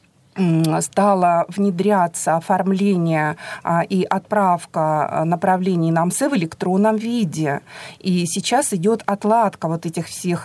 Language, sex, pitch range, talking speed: Russian, female, 170-210 Hz, 100 wpm